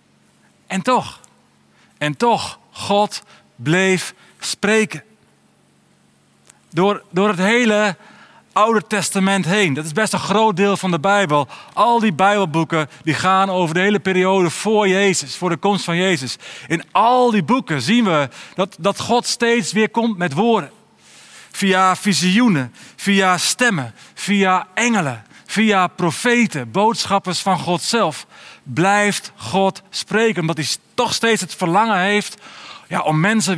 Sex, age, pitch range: male, 40-59, 160-210 Hz